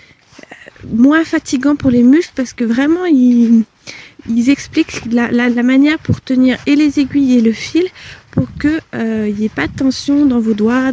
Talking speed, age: 190 wpm, 20-39